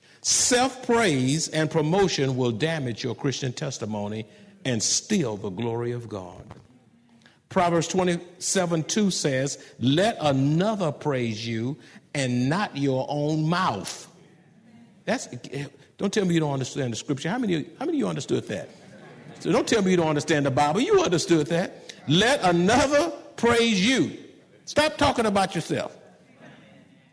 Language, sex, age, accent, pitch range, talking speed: English, male, 50-69, American, 130-200 Hz, 145 wpm